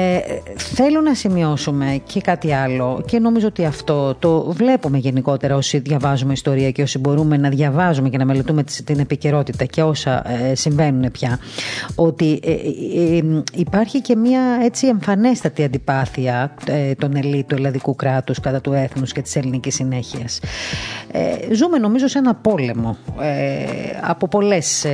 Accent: native